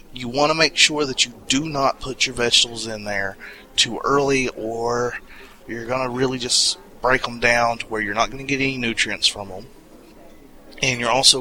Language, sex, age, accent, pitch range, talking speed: English, male, 30-49, American, 110-135 Hz, 205 wpm